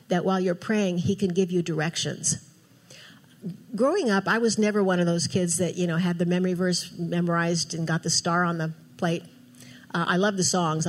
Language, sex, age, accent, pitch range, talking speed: English, female, 60-79, American, 165-200 Hz, 210 wpm